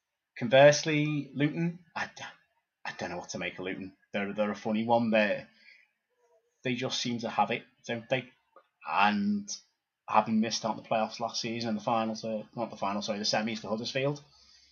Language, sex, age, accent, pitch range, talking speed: English, male, 20-39, British, 110-135 Hz, 190 wpm